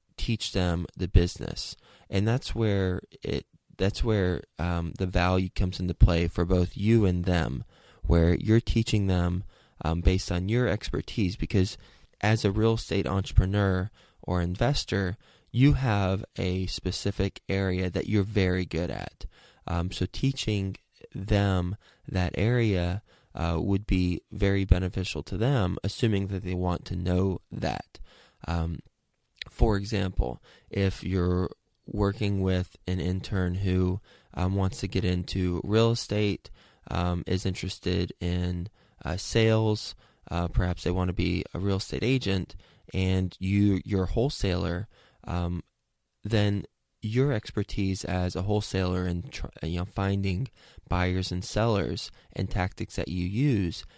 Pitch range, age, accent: 90-105 Hz, 20-39, American